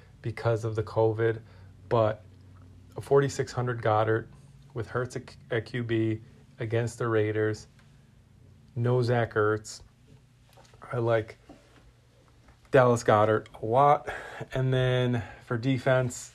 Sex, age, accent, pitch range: male, 30-49, American, 110-125 Hz